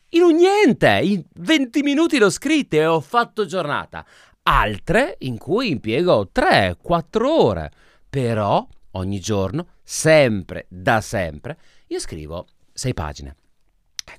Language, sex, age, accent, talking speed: Italian, male, 30-49, native, 125 wpm